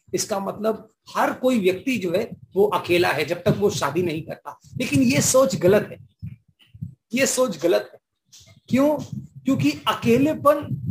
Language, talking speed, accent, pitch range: English, 150 wpm, Indian, 175-265 Hz